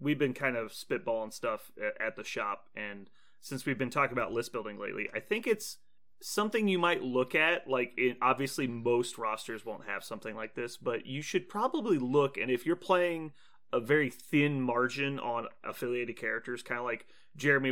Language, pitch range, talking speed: English, 120-155 Hz, 185 wpm